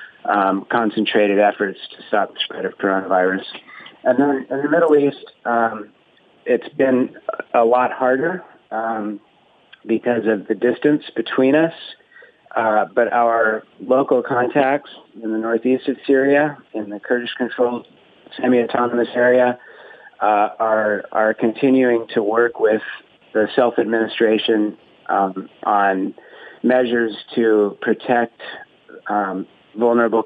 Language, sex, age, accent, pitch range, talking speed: English, male, 40-59, American, 105-120 Hz, 115 wpm